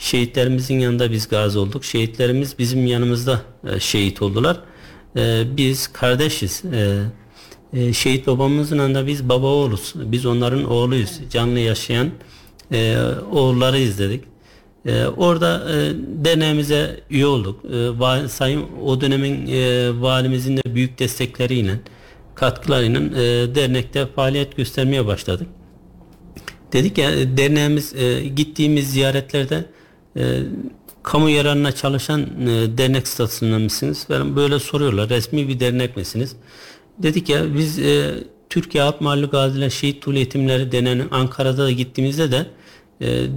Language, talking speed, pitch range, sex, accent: Turkish, 105 wpm, 120-140 Hz, male, native